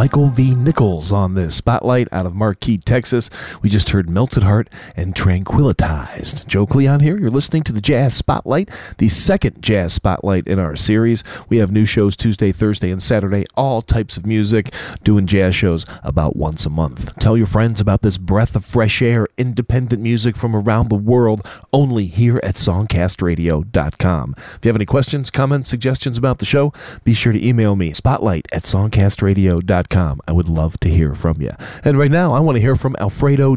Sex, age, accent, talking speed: male, 40-59, American, 190 wpm